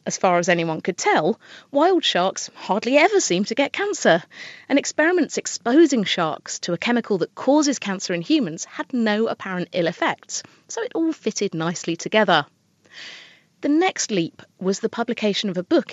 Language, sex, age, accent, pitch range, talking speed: English, female, 30-49, British, 185-280 Hz, 175 wpm